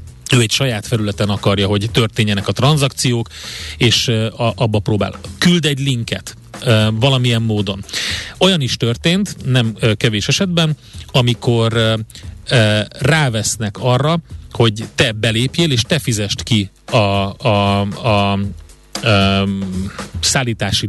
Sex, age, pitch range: male, 30-49, 105-135 Hz